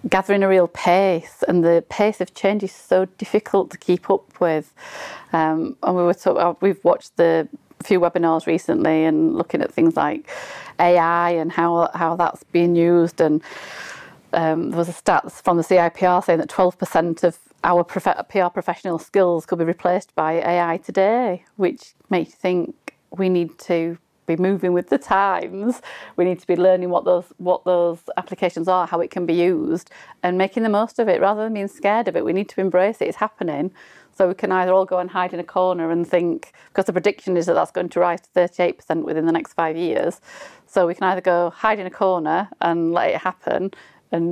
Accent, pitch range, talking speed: British, 170-190 Hz, 210 wpm